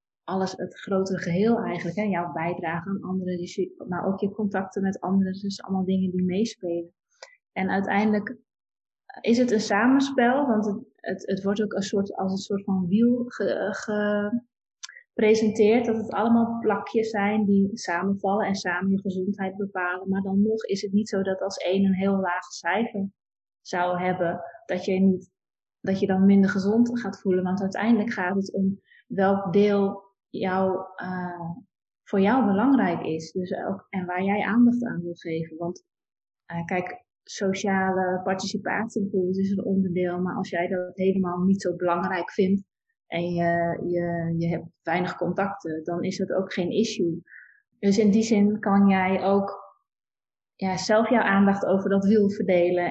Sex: female